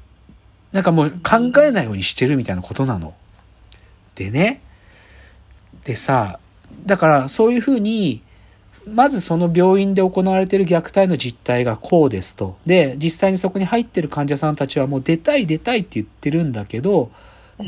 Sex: male